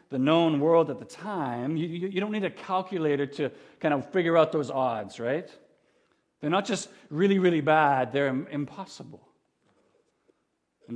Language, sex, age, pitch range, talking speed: English, male, 50-69, 130-175 Hz, 165 wpm